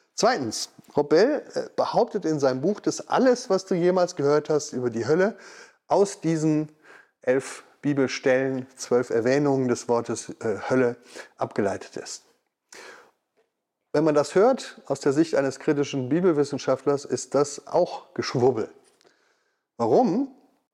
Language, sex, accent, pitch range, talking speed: German, male, German, 130-175 Hz, 125 wpm